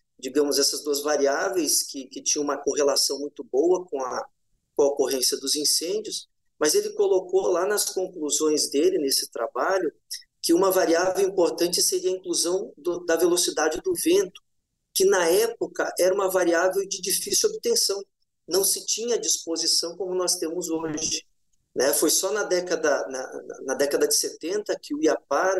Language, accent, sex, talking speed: English, Brazilian, male, 160 wpm